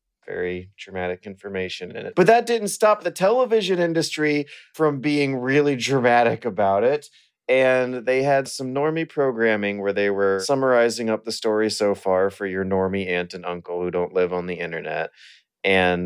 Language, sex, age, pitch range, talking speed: English, male, 30-49, 95-135 Hz, 170 wpm